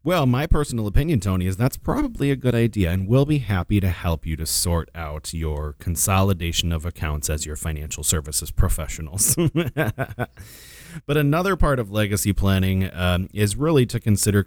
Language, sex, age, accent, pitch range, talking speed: English, male, 30-49, American, 85-110 Hz, 170 wpm